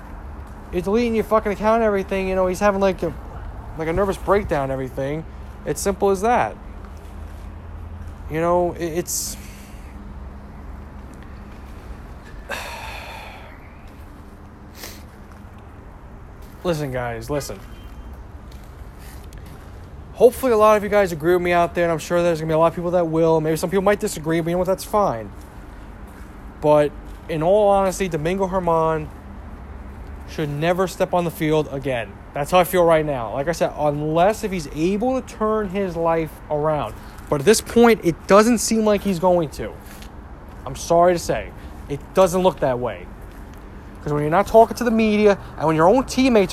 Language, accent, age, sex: English, American, 20-39, male